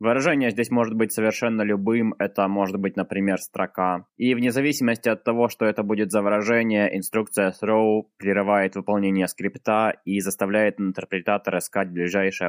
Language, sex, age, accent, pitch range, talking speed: Russian, male, 20-39, native, 100-115 Hz, 150 wpm